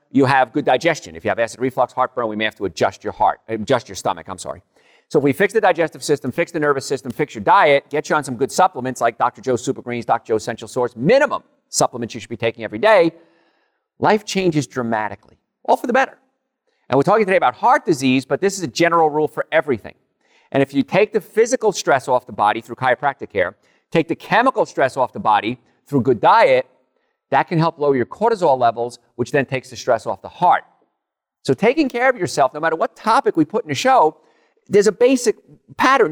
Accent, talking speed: American, 230 wpm